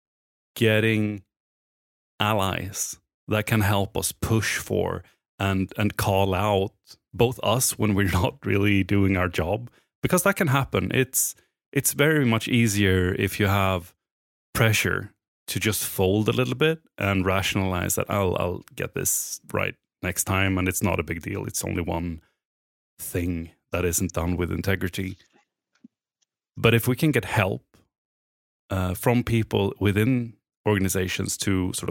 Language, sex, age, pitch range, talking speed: English, male, 30-49, 95-120 Hz, 145 wpm